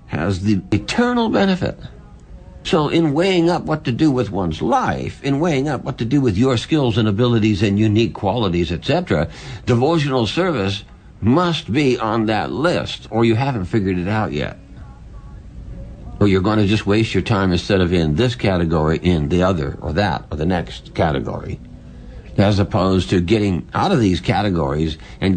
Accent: American